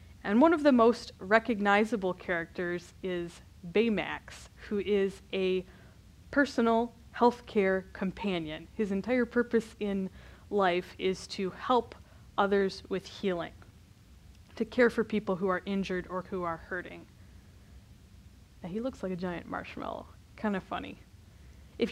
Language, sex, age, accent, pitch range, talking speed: English, female, 20-39, American, 175-210 Hz, 135 wpm